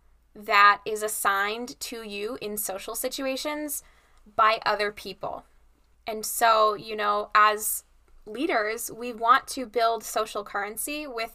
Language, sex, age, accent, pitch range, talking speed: English, female, 10-29, American, 200-235 Hz, 125 wpm